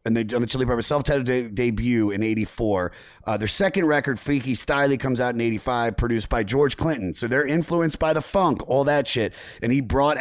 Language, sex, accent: English, male, American